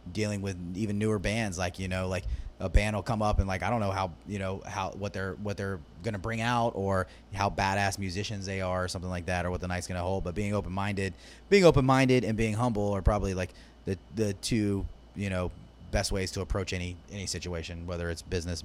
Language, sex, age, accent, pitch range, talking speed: English, male, 30-49, American, 90-105 Hz, 230 wpm